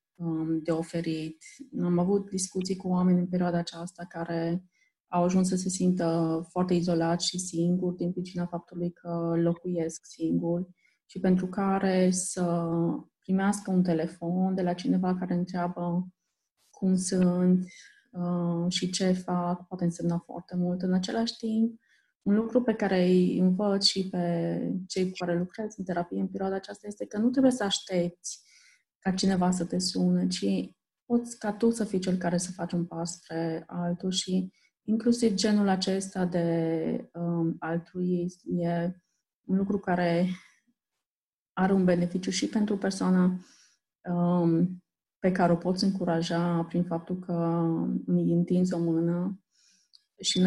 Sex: female